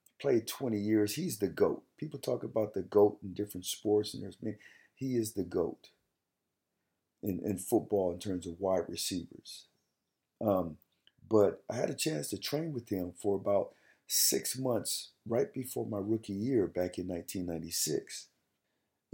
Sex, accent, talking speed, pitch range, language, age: male, American, 165 wpm, 95-110 Hz, English, 50-69